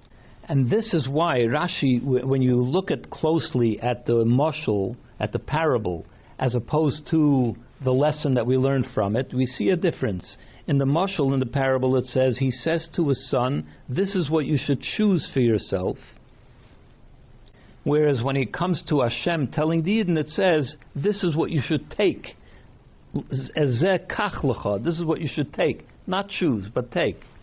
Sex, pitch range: male, 125-170 Hz